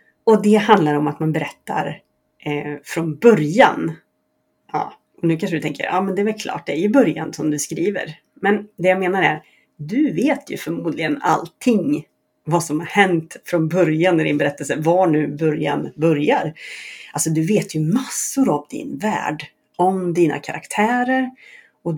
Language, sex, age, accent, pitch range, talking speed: Swedish, female, 30-49, native, 150-215 Hz, 175 wpm